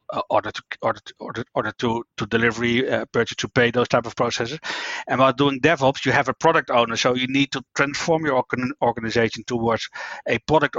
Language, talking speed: English, 195 wpm